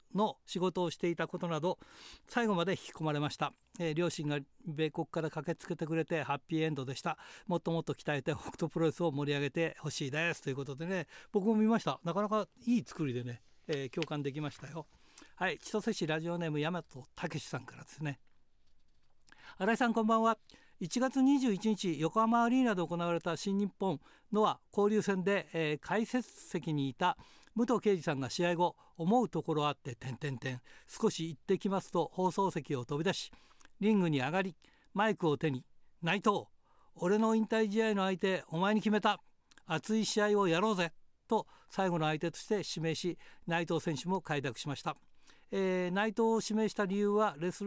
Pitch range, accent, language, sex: 150-205 Hz, native, Japanese, male